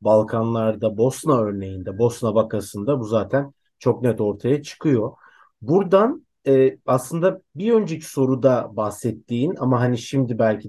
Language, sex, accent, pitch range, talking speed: Turkish, male, native, 105-135 Hz, 125 wpm